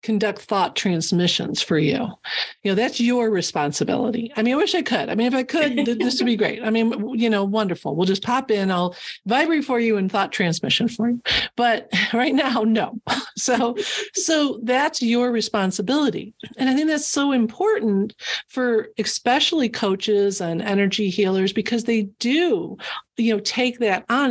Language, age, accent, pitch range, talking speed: English, 50-69, American, 195-240 Hz, 180 wpm